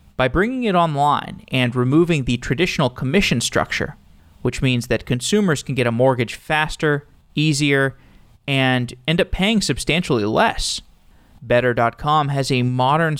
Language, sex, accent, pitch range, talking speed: English, male, American, 125-155 Hz, 135 wpm